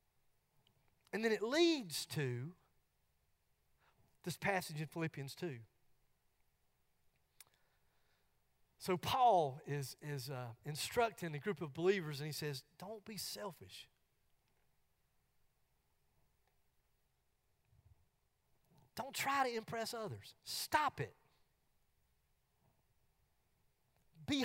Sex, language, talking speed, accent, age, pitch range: male, English, 85 wpm, American, 40-59, 155-250 Hz